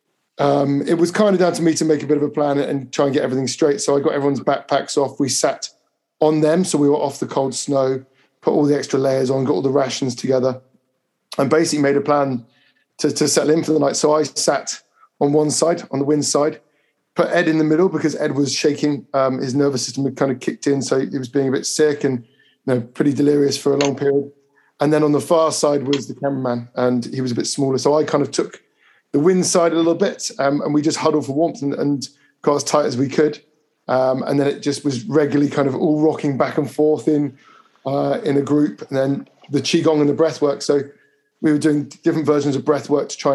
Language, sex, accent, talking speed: English, male, British, 250 wpm